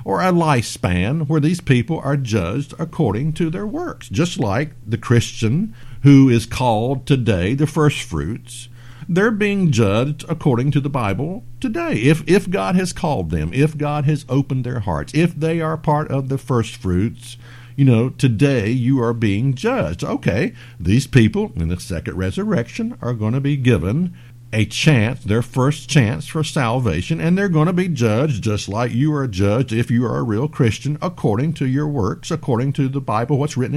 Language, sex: English, male